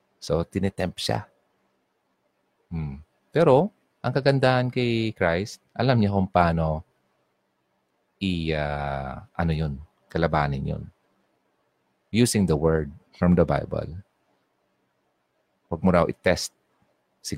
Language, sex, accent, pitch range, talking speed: Filipino, male, native, 65-105 Hz, 100 wpm